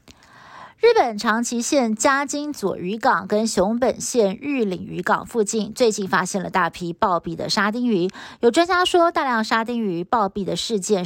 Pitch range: 185-235 Hz